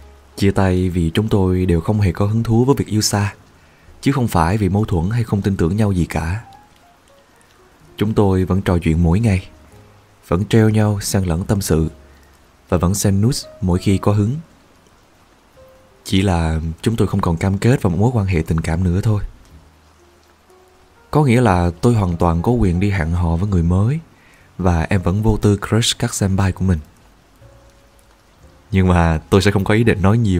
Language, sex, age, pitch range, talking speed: Vietnamese, male, 20-39, 85-105 Hz, 200 wpm